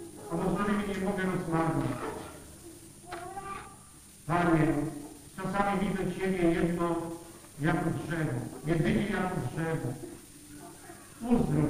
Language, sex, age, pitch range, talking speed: Polish, male, 50-69, 160-200 Hz, 90 wpm